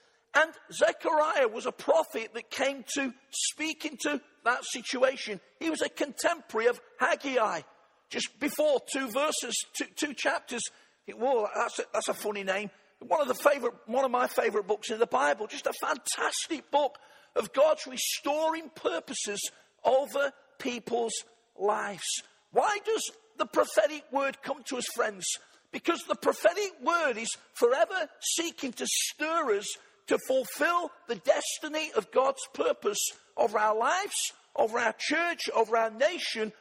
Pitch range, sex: 240-325 Hz, male